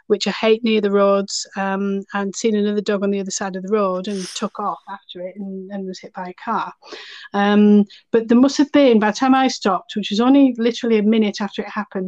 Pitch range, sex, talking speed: 195-225 Hz, female, 250 wpm